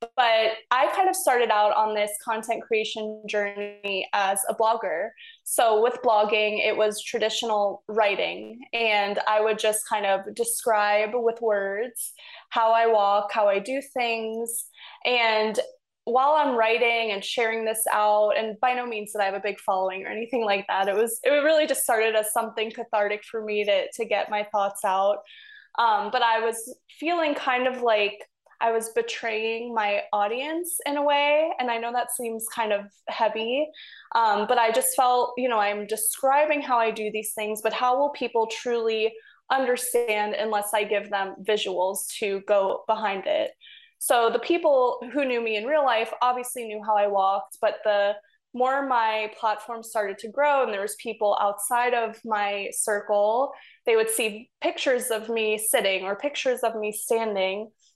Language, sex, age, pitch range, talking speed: English, female, 20-39, 210-250 Hz, 175 wpm